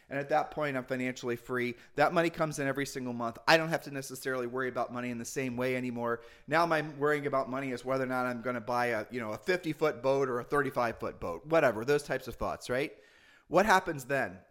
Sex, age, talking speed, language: male, 30-49, 250 wpm, English